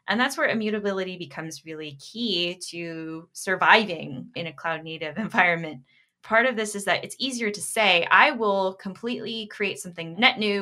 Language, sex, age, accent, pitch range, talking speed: English, female, 10-29, American, 160-205 Hz, 165 wpm